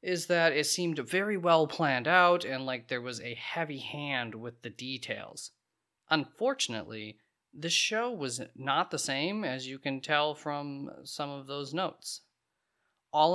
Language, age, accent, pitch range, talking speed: English, 30-49, American, 135-180 Hz, 155 wpm